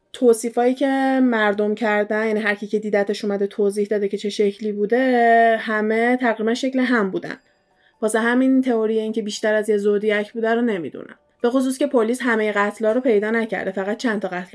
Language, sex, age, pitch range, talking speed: Persian, female, 20-39, 205-230 Hz, 185 wpm